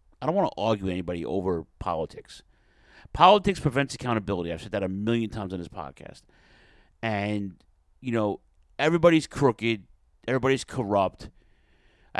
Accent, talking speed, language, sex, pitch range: American, 145 wpm, English, male, 90-115 Hz